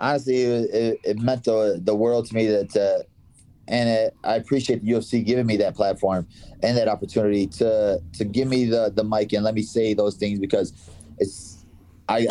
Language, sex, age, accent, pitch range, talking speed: English, male, 30-49, American, 105-120 Hz, 195 wpm